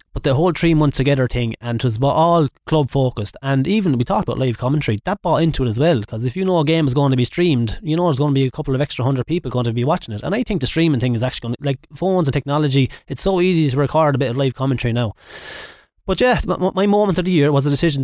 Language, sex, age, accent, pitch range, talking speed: English, male, 20-39, Irish, 125-160 Hz, 295 wpm